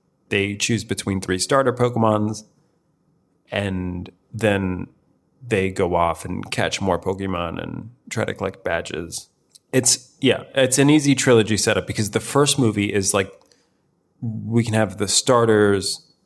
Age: 30-49